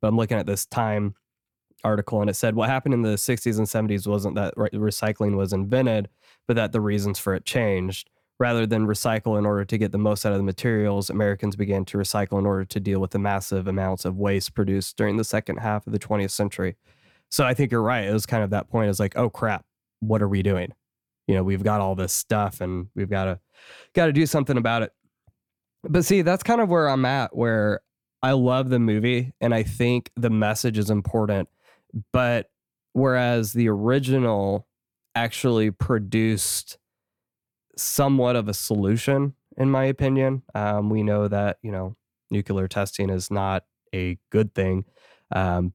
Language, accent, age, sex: English, American, 20-39, male